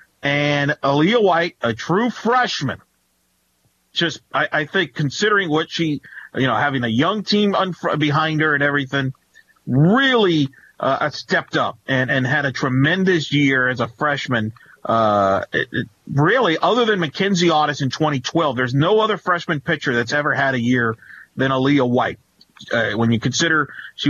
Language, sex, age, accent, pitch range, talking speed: English, male, 40-59, American, 120-155 Hz, 160 wpm